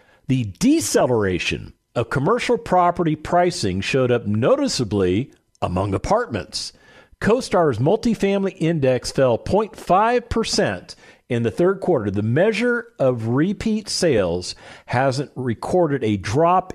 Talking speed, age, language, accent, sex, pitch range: 105 wpm, 50-69, English, American, male, 105-170 Hz